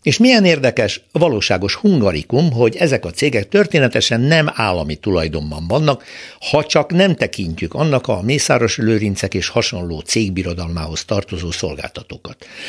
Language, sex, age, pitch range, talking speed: Hungarian, male, 60-79, 95-145 Hz, 130 wpm